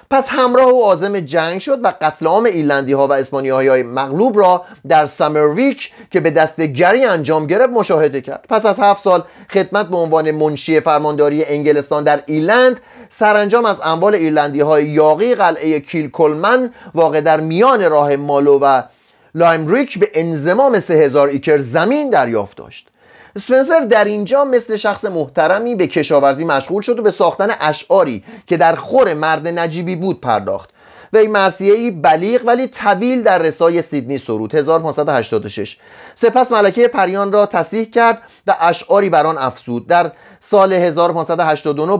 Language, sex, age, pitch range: Persian, male, 30-49, 150-210 Hz